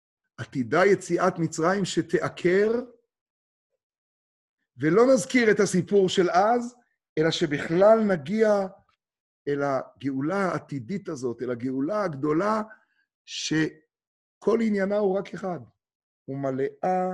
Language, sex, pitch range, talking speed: Hebrew, male, 120-175 Hz, 90 wpm